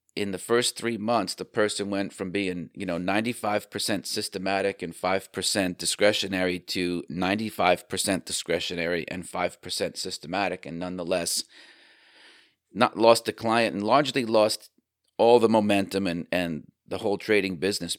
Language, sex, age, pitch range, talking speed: English, male, 40-59, 85-105 Hz, 135 wpm